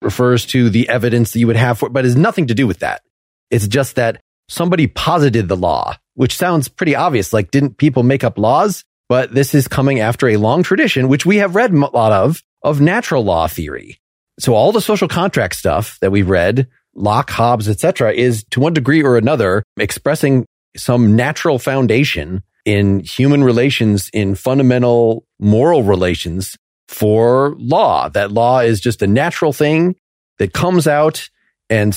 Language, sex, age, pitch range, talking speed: English, male, 30-49, 110-145 Hz, 180 wpm